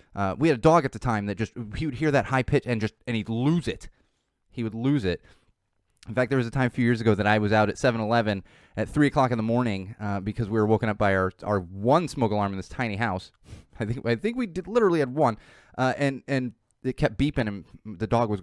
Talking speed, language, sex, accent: 275 wpm, English, male, American